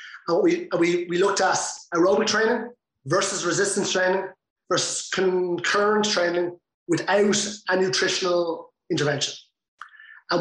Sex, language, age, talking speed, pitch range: male, English, 30-49, 100 wpm, 180-210 Hz